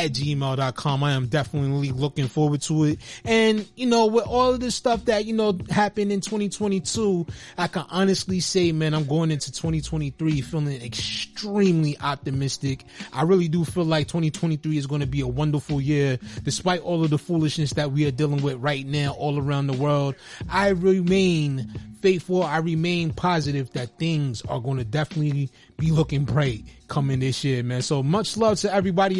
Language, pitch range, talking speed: English, 145-185 Hz, 180 wpm